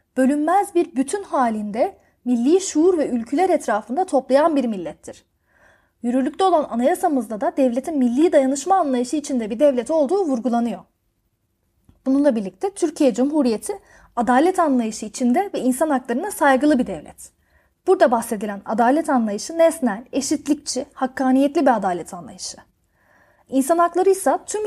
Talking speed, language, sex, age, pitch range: 125 wpm, Turkish, female, 30-49, 245-320 Hz